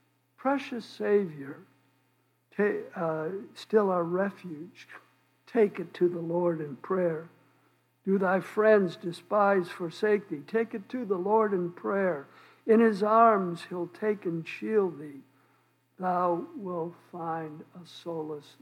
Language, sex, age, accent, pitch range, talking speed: English, male, 60-79, American, 140-200 Hz, 125 wpm